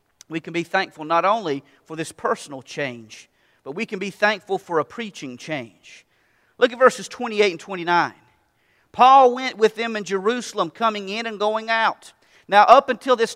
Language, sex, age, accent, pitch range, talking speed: English, male, 40-59, American, 190-245 Hz, 180 wpm